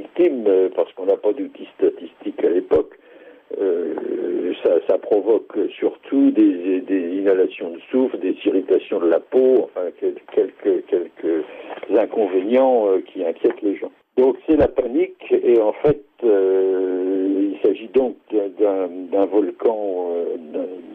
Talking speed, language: 130 wpm, French